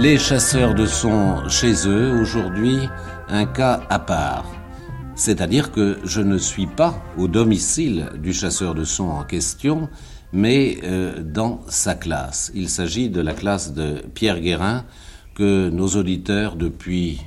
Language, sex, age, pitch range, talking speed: French, male, 60-79, 85-110 Hz, 145 wpm